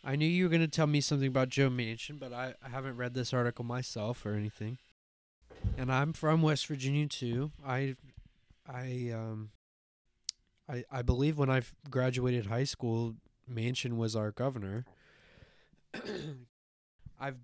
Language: English